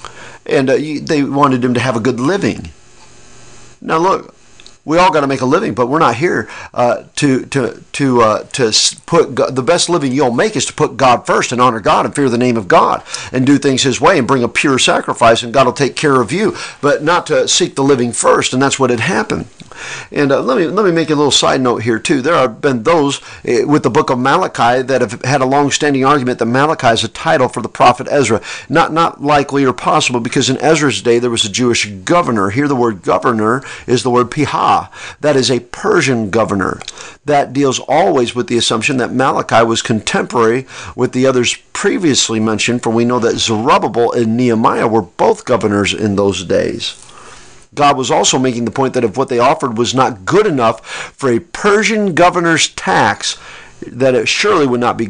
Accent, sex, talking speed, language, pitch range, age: American, male, 215 wpm, English, 115-145 Hz, 50-69